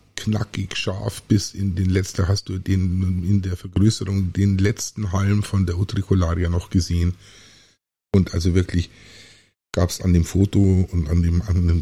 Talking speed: 170 wpm